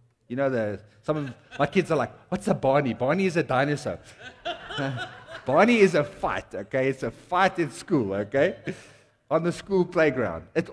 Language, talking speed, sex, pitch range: English, 180 wpm, male, 120-200 Hz